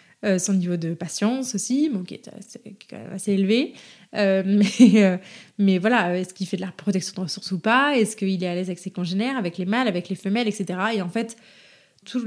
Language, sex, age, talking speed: French, female, 20-39, 230 wpm